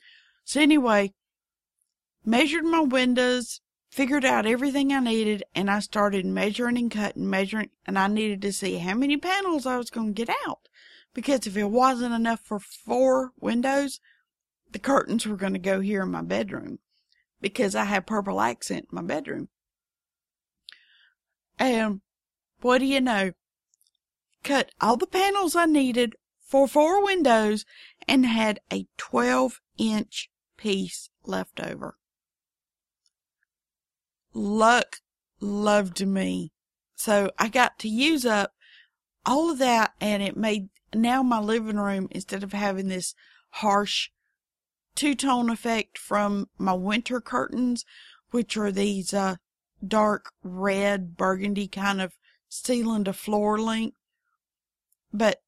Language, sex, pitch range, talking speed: English, female, 200-255 Hz, 135 wpm